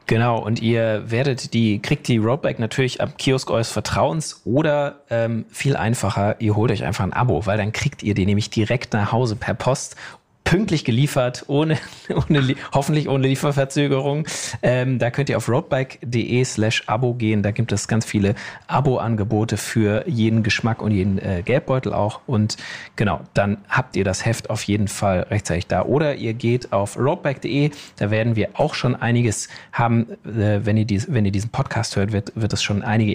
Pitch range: 105-135 Hz